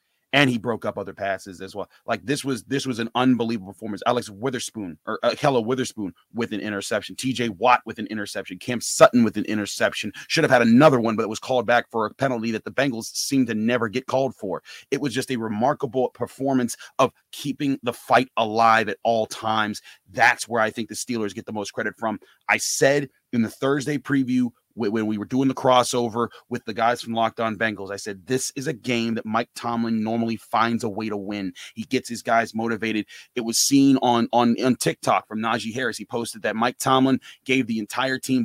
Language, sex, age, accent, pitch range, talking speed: English, male, 30-49, American, 110-130 Hz, 220 wpm